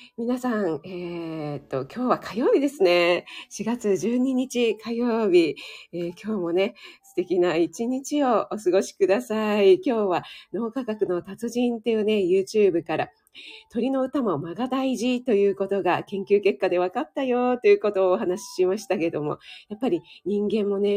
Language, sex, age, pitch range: Japanese, female, 40-59, 185-260 Hz